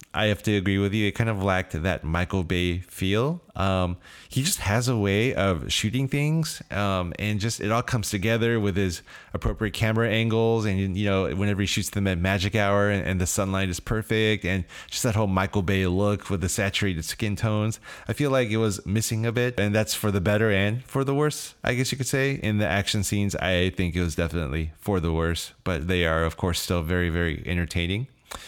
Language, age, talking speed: English, 30-49, 225 wpm